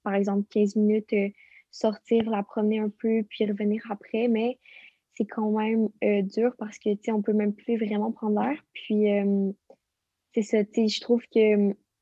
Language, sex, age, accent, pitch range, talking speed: French, female, 20-39, Canadian, 205-225 Hz, 195 wpm